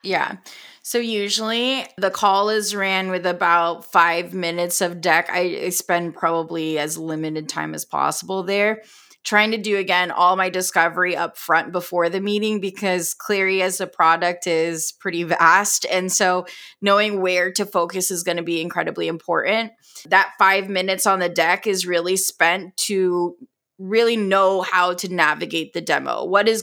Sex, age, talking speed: female, 20-39, 165 wpm